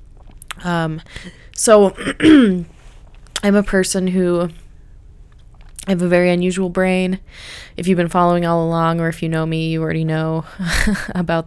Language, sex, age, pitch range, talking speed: English, female, 20-39, 150-175 Hz, 140 wpm